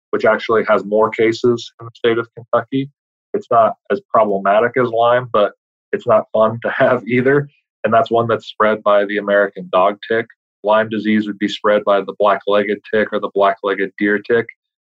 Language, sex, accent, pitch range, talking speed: English, male, American, 105-130 Hz, 190 wpm